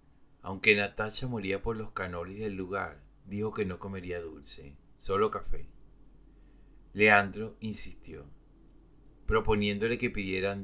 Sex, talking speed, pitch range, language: male, 115 wpm, 90-105 Hz, Spanish